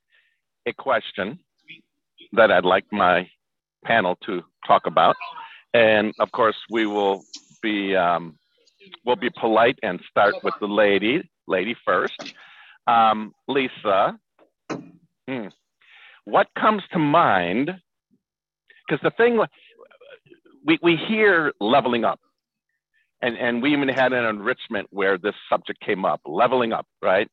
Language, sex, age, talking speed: English, male, 50-69, 125 wpm